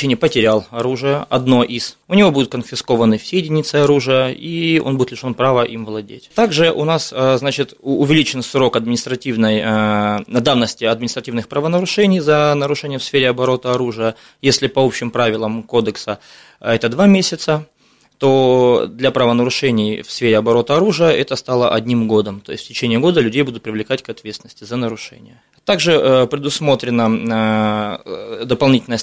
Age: 20-39